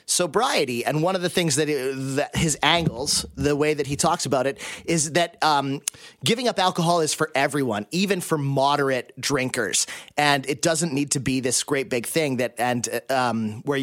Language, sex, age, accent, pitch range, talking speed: English, male, 30-49, American, 130-170 Hz, 190 wpm